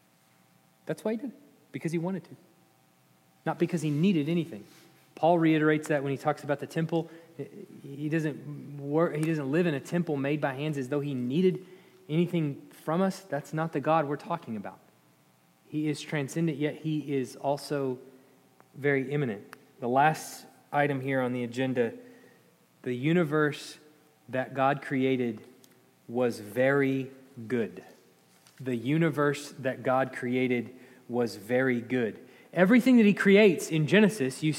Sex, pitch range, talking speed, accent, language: male, 130-165 Hz, 155 wpm, American, English